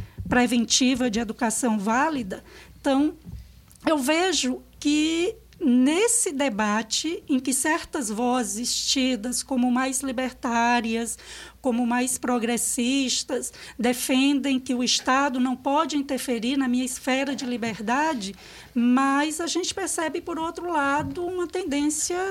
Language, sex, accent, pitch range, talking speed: English, female, Brazilian, 245-305 Hz, 115 wpm